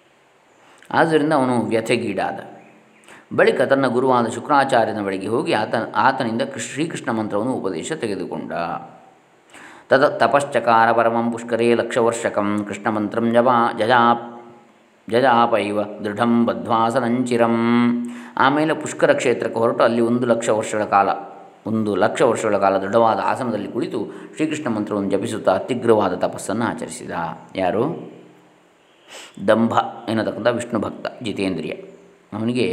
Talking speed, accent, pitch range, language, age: 105 wpm, native, 105-120 Hz, Kannada, 20-39